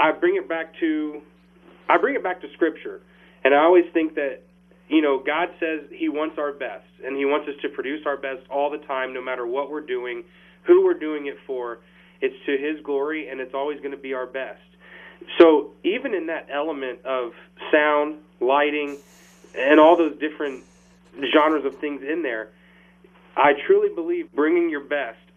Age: 30-49